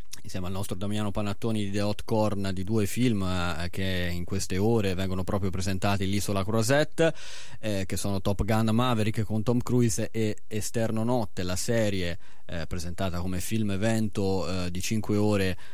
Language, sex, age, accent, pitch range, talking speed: Italian, male, 30-49, native, 95-115 Hz, 170 wpm